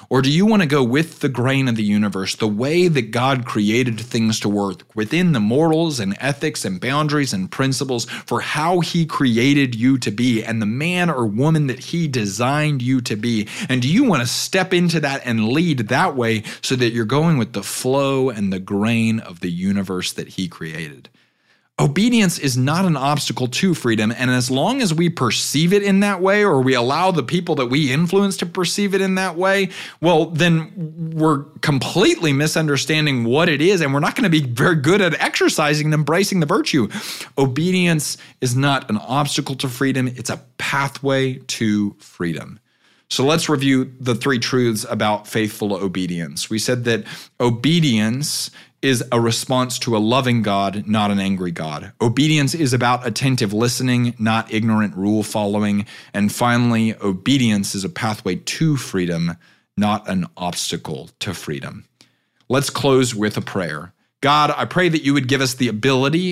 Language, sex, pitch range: English, male, 110-155 Hz